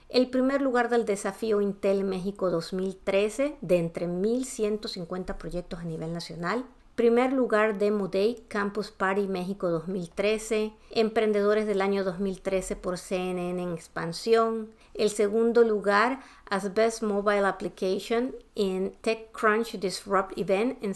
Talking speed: 120 wpm